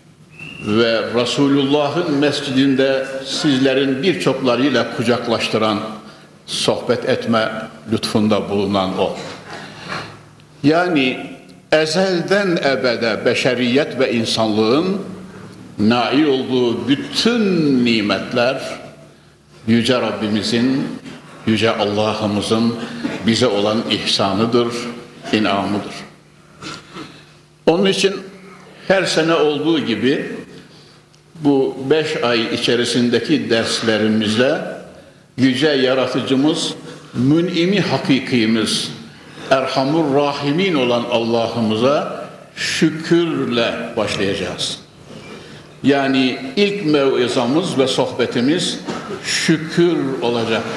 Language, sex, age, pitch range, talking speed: Turkish, male, 60-79, 115-160 Hz, 65 wpm